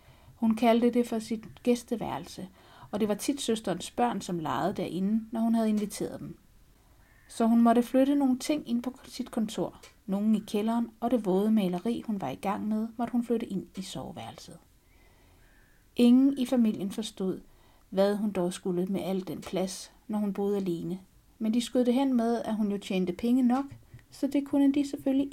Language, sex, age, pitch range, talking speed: Danish, female, 60-79, 180-235 Hz, 190 wpm